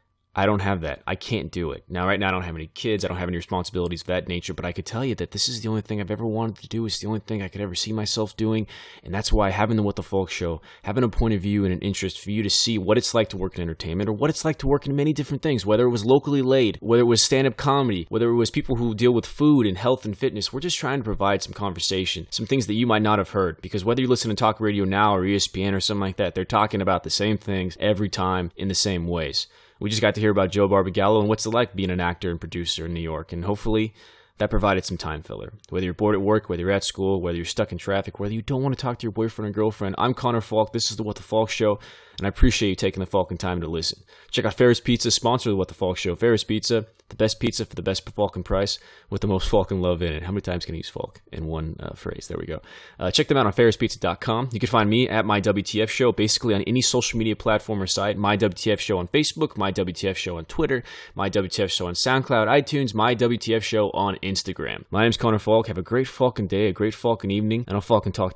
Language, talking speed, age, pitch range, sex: English, 285 wpm, 20-39, 95-115 Hz, male